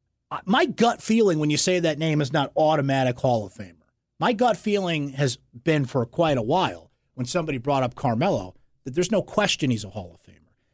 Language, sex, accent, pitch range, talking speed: English, male, American, 125-165 Hz, 205 wpm